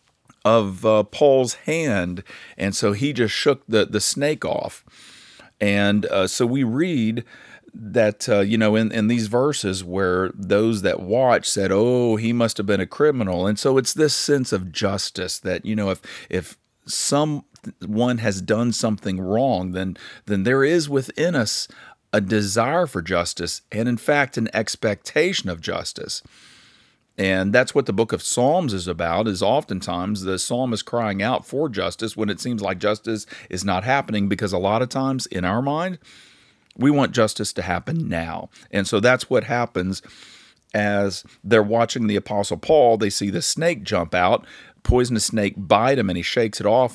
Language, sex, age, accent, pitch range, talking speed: English, male, 40-59, American, 95-120 Hz, 175 wpm